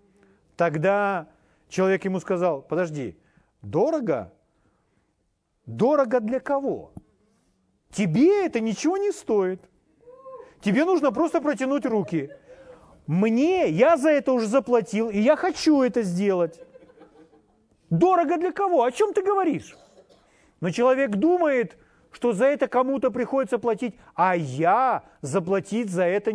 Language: Russian